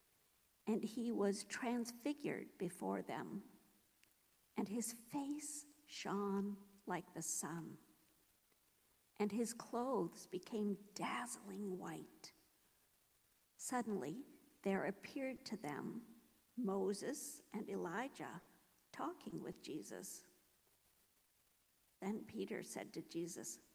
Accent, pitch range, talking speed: American, 195-245 Hz, 90 wpm